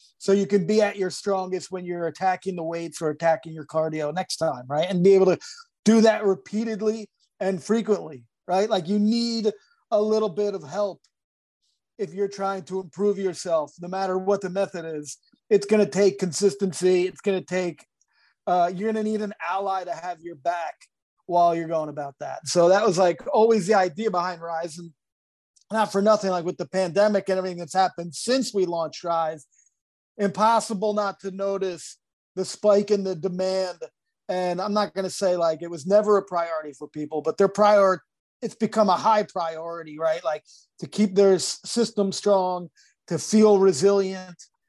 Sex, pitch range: male, 175-205 Hz